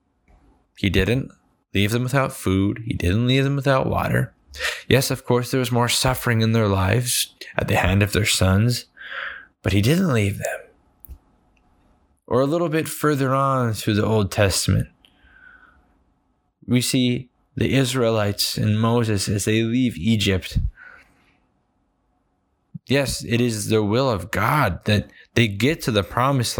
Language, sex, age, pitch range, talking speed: English, male, 20-39, 100-125 Hz, 150 wpm